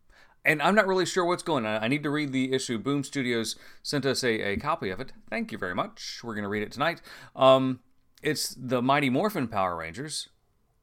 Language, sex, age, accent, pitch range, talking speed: English, male, 40-59, American, 115-140 Hz, 220 wpm